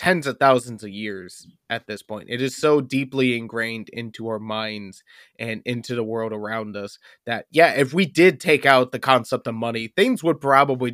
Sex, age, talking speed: male, 20-39, 200 wpm